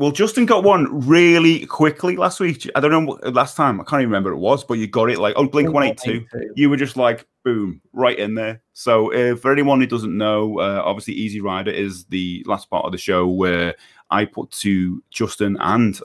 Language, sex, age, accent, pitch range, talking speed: English, male, 30-49, British, 95-130 Hz, 220 wpm